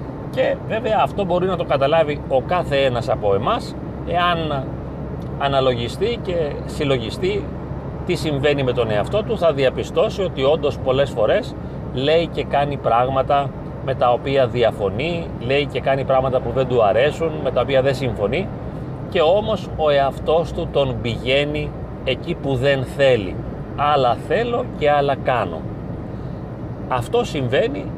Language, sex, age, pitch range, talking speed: Greek, male, 40-59, 130-160 Hz, 145 wpm